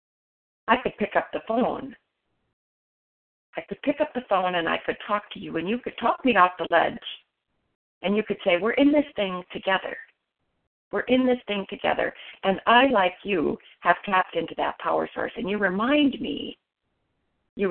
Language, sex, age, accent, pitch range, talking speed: English, female, 40-59, American, 195-250 Hz, 185 wpm